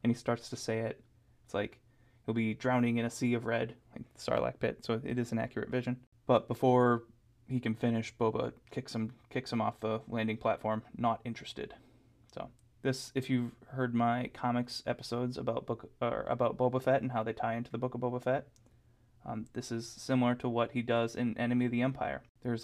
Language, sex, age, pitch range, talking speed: English, male, 20-39, 110-120 Hz, 210 wpm